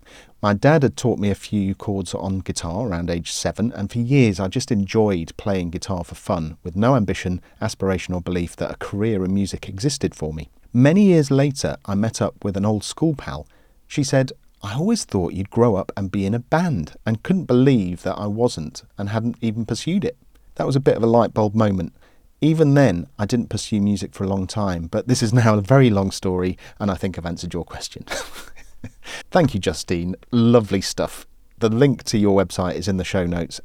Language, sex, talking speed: English, male, 215 wpm